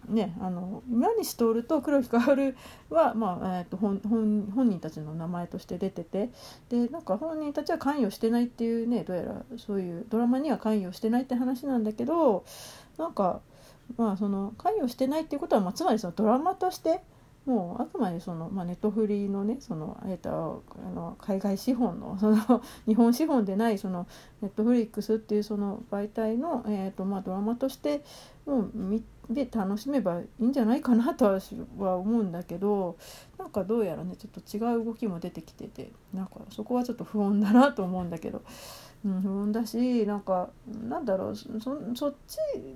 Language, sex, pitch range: Japanese, female, 195-250 Hz